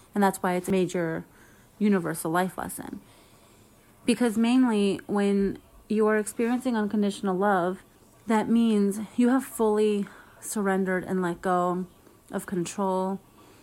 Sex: female